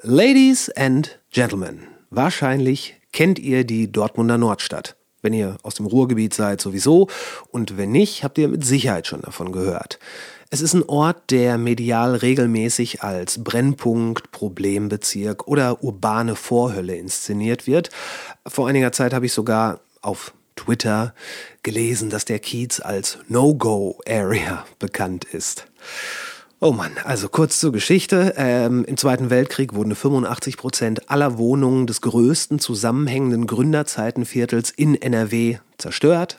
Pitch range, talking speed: 110-140 Hz, 130 wpm